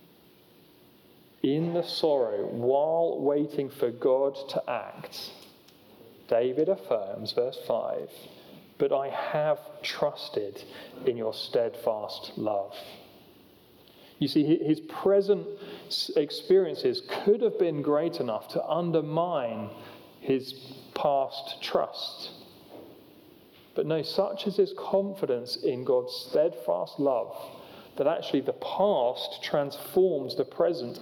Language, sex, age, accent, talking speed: English, male, 40-59, British, 105 wpm